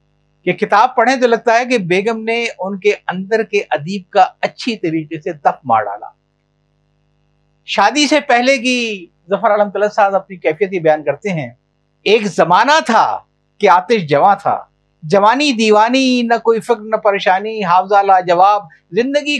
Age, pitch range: 50-69, 160-225 Hz